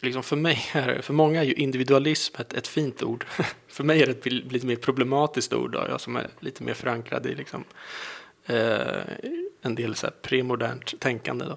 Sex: male